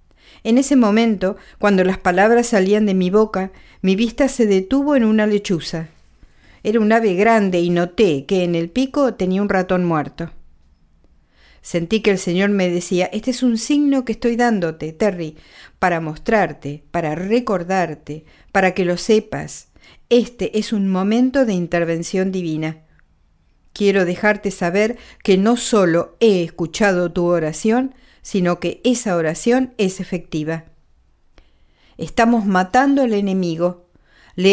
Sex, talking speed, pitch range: female, 140 wpm, 170-225 Hz